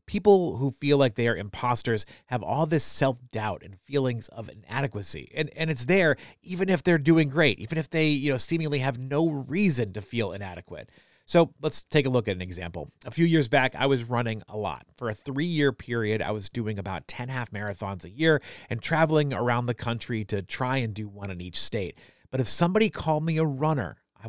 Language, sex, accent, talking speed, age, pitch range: English, male, American, 215 wpm, 30-49, 115-150 Hz